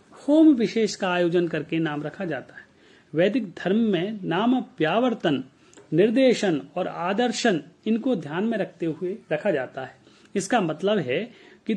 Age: 40-59